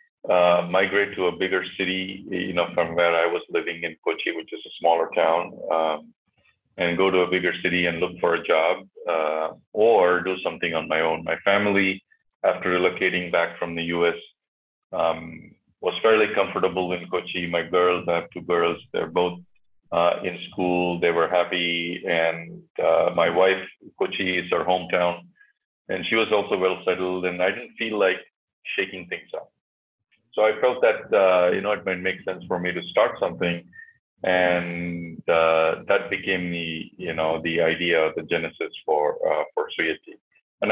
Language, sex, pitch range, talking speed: English, male, 85-95 Hz, 180 wpm